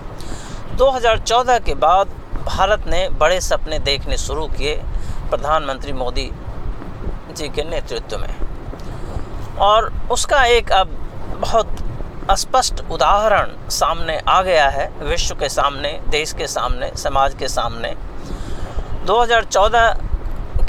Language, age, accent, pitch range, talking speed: Hindi, 50-69, native, 145-225 Hz, 105 wpm